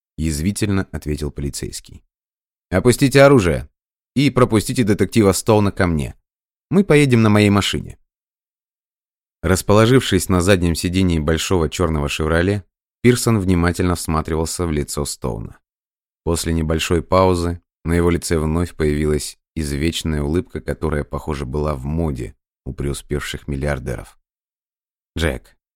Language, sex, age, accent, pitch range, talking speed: Russian, male, 30-49, native, 75-95 Hz, 110 wpm